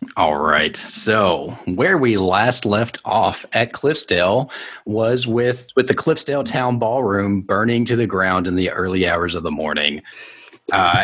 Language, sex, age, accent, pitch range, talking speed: English, male, 40-59, American, 85-125 Hz, 160 wpm